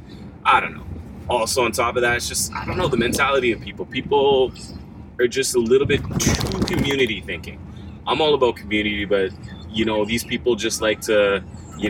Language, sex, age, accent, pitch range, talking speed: English, male, 20-39, American, 100-120 Hz, 195 wpm